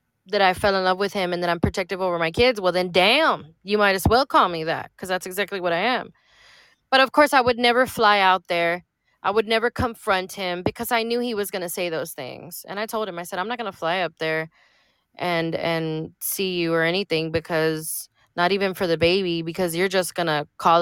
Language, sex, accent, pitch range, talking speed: English, female, American, 175-220 Hz, 245 wpm